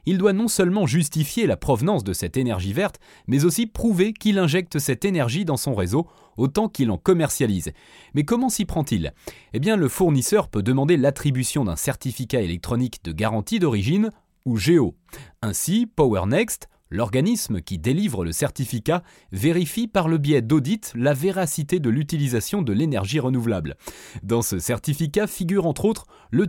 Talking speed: 160 wpm